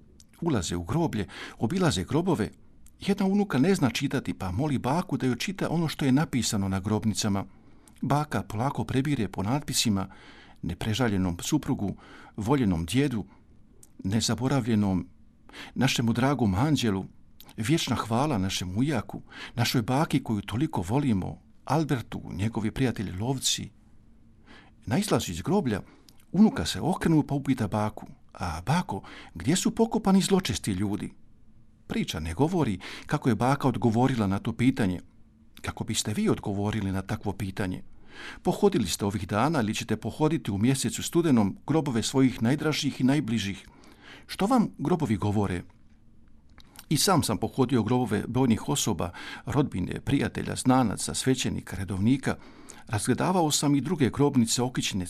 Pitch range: 105-140 Hz